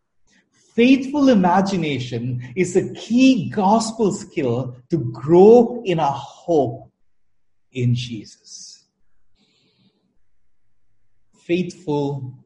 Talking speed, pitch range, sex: 70 wpm, 115-190 Hz, male